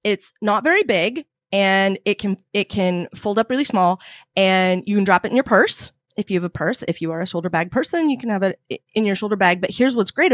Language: English